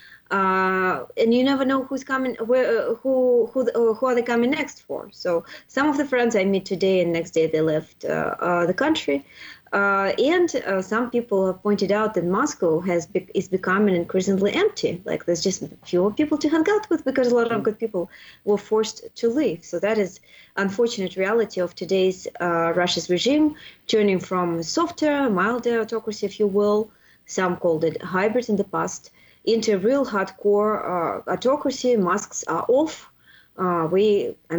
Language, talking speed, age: English, 180 wpm, 20-39